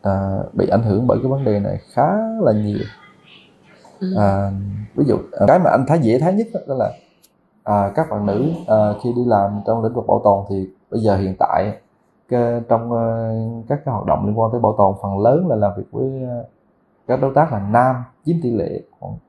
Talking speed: 220 wpm